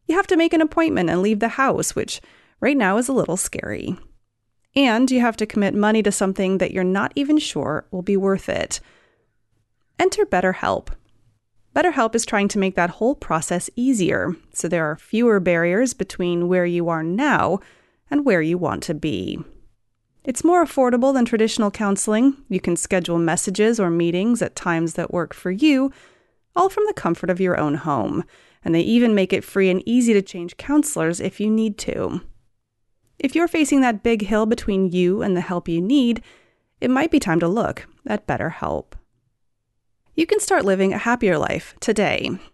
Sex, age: female, 30-49